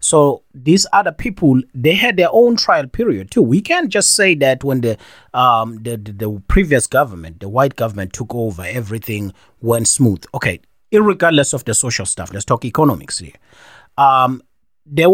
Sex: male